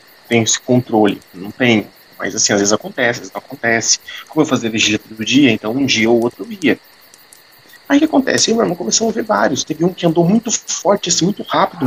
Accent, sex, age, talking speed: Brazilian, male, 40-59, 210 wpm